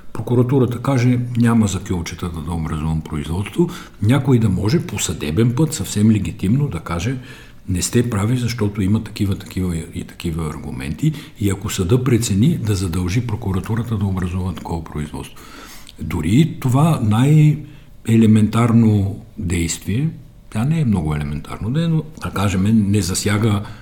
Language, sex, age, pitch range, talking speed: Bulgarian, male, 60-79, 90-120 Hz, 135 wpm